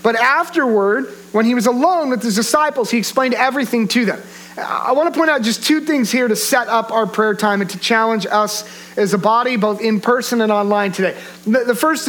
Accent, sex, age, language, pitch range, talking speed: American, male, 40-59, English, 175-245 Hz, 220 wpm